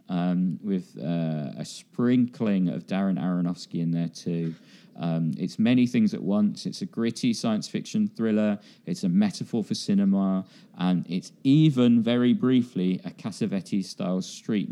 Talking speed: 150 wpm